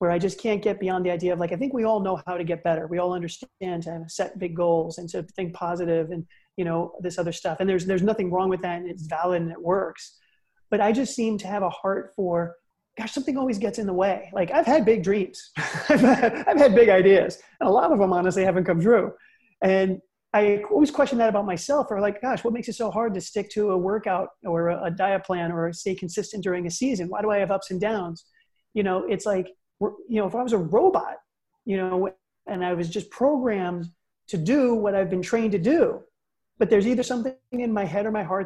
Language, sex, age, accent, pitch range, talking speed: English, male, 30-49, American, 180-230 Hz, 250 wpm